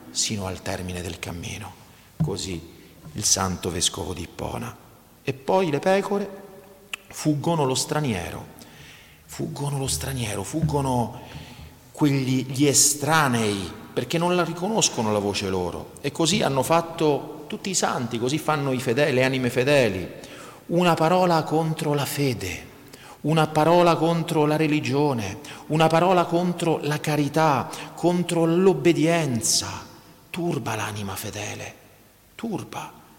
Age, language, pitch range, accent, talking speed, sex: 40-59, Italian, 115-160 Hz, native, 120 wpm, male